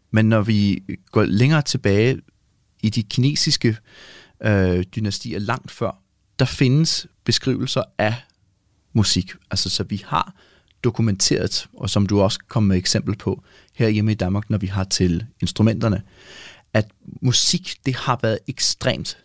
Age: 30-49